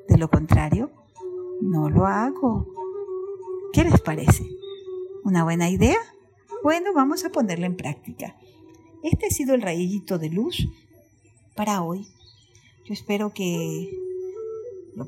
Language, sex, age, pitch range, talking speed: Spanish, female, 50-69, 180-275 Hz, 125 wpm